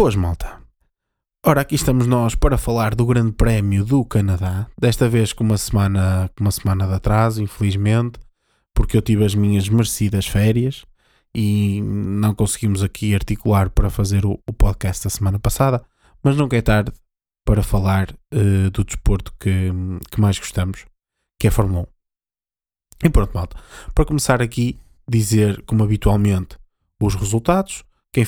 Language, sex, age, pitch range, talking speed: Portuguese, male, 20-39, 100-115 Hz, 150 wpm